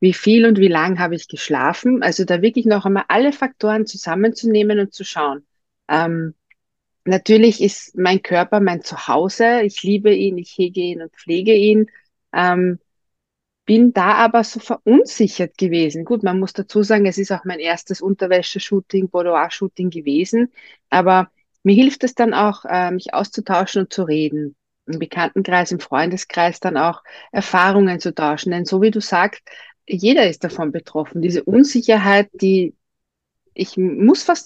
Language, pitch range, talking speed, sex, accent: German, 175-220 Hz, 160 wpm, female, German